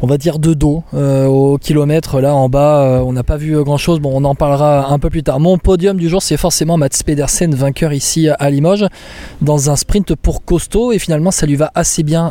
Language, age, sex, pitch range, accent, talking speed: French, 20-39, male, 140-170 Hz, French, 240 wpm